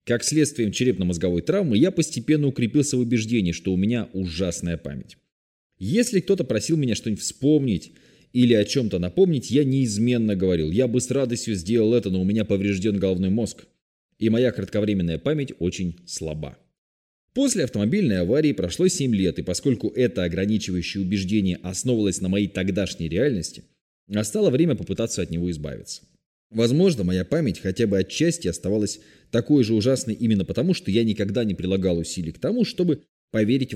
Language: Russian